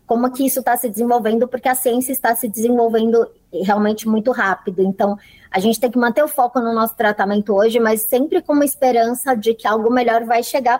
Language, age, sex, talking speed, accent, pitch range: Portuguese, 20-39, male, 210 wpm, Brazilian, 210-250 Hz